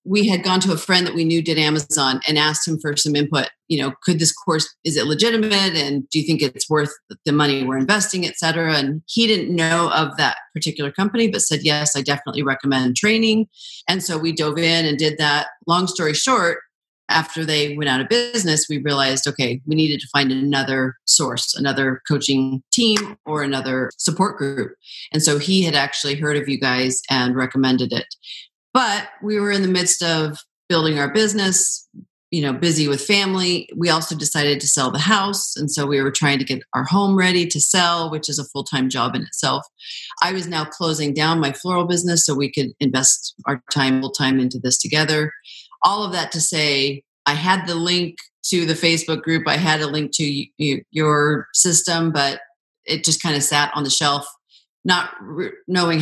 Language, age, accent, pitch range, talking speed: English, 40-59, American, 140-175 Hz, 205 wpm